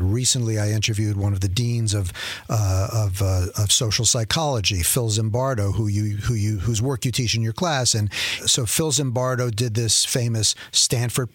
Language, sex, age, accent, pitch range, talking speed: English, male, 50-69, American, 110-130 Hz, 185 wpm